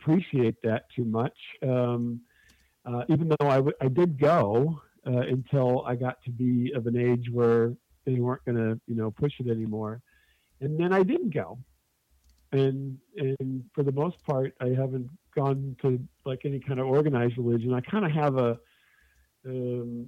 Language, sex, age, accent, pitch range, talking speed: English, male, 50-69, American, 120-140 Hz, 175 wpm